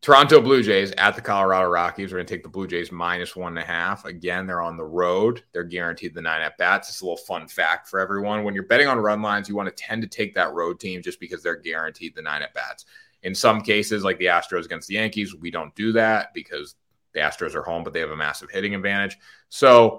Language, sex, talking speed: English, male, 250 wpm